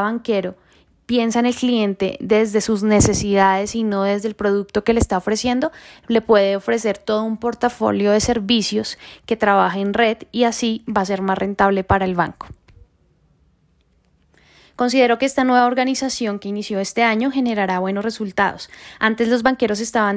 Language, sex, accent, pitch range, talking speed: Spanish, female, Colombian, 200-235 Hz, 165 wpm